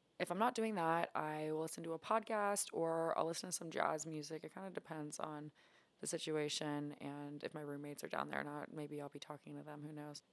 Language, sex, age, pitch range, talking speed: English, female, 20-39, 150-180 Hz, 245 wpm